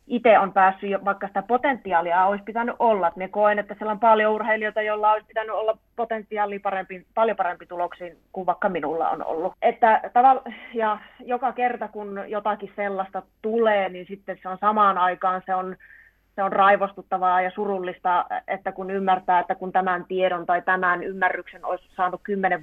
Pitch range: 185-215 Hz